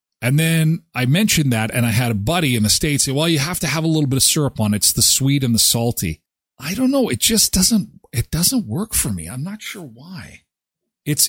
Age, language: 40-59, English